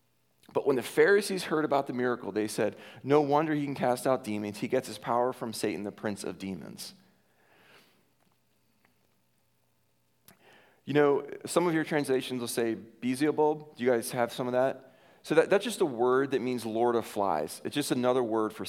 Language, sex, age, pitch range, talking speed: English, male, 40-59, 115-150 Hz, 185 wpm